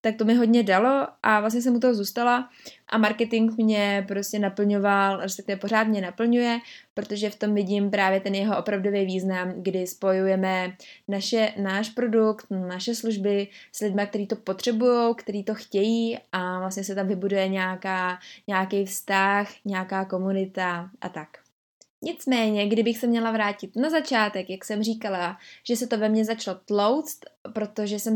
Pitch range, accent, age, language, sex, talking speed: 195-225 Hz, native, 20-39, Czech, female, 160 wpm